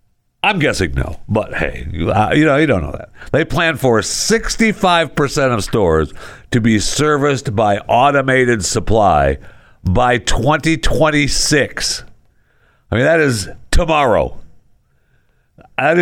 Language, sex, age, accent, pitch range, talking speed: English, male, 60-79, American, 95-125 Hz, 115 wpm